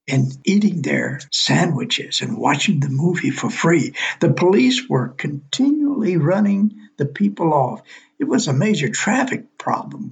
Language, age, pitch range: English, 60-79, 140-210 Hz